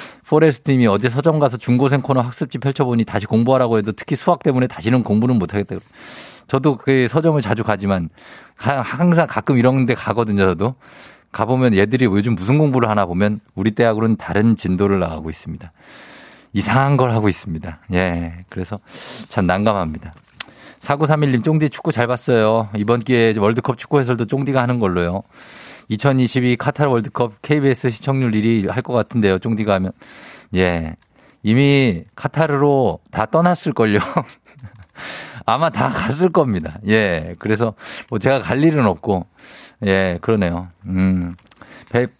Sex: male